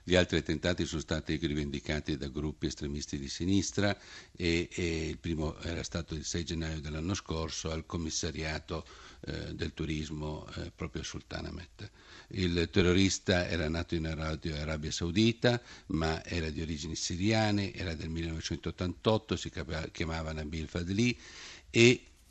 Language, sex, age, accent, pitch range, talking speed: Italian, male, 50-69, native, 80-95 Hz, 140 wpm